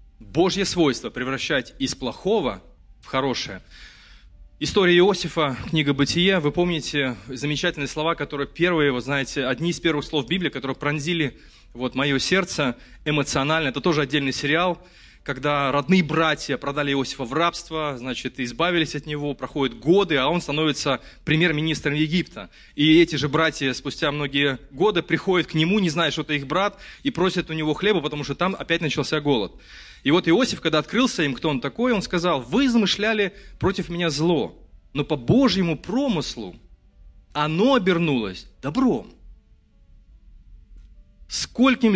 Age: 20-39